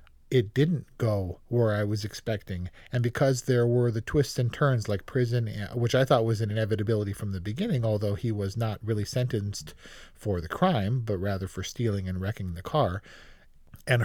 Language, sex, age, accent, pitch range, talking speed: English, male, 40-59, American, 105-130 Hz, 190 wpm